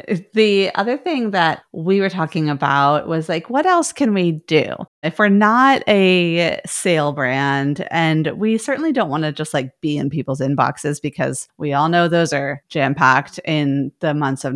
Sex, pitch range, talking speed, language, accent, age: female, 145-190 Hz, 185 wpm, English, American, 30-49